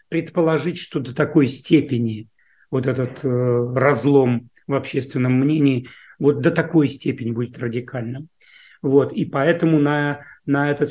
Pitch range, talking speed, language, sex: 130-155 Hz, 130 wpm, Russian, male